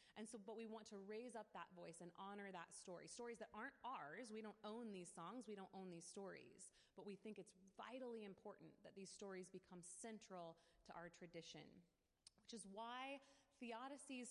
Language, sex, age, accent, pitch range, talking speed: English, female, 30-49, American, 180-230 Hz, 195 wpm